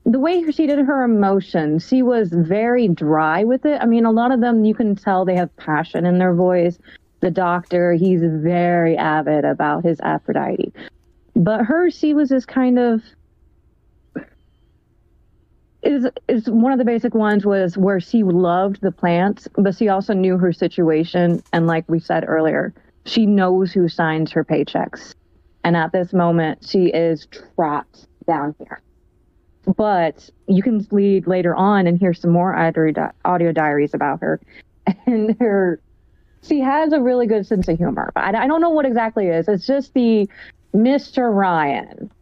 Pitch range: 170-230 Hz